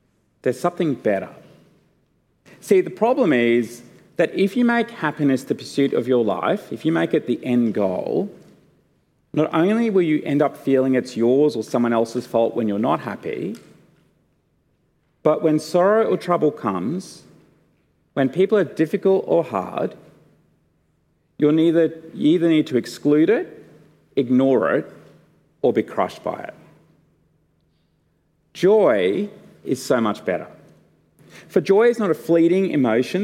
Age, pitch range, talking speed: 40-59, 125-185 Hz, 140 wpm